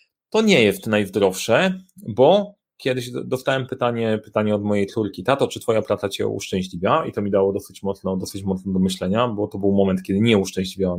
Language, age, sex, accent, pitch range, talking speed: Polish, 30-49, male, native, 105-135 Hz, 190 wpm